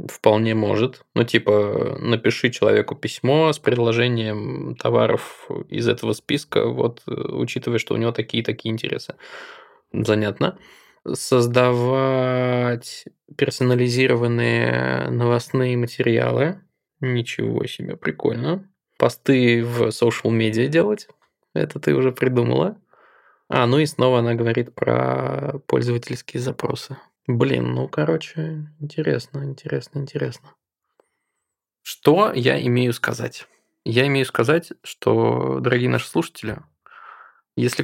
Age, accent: 20-39, native